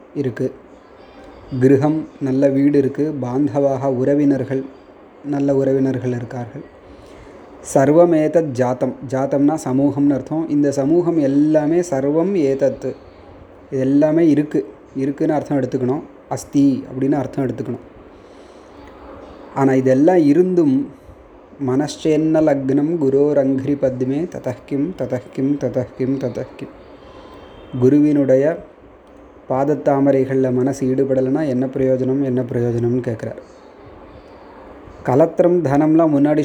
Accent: native